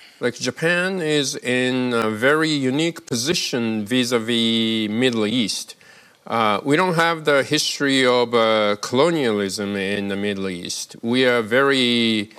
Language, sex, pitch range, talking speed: English, male, 110-130 Hz, 130 wpm